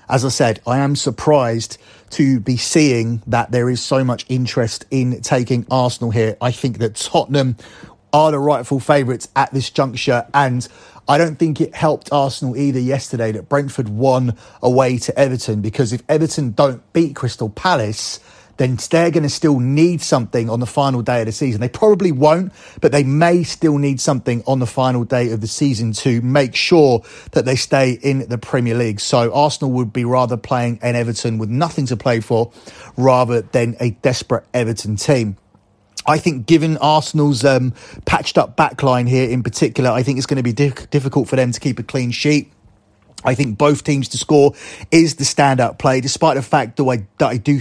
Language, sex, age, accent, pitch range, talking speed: English, male, 30-49, British, 120-145 Hz, 195 wpm